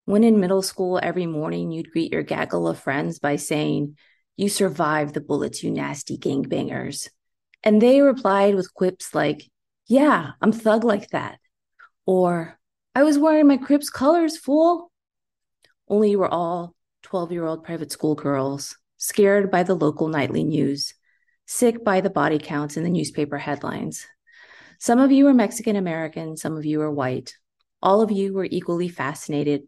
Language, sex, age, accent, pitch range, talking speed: English, female, 30-49, American, 150-210 Hz, 160 wpm